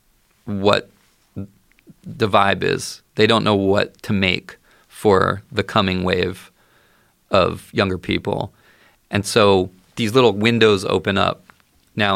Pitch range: 95-105 Hz